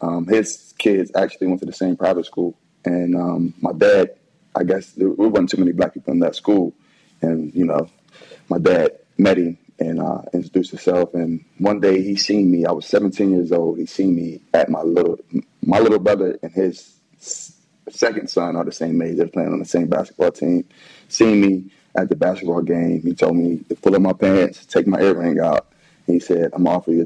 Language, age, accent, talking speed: English, 20-39, American, 215 wpm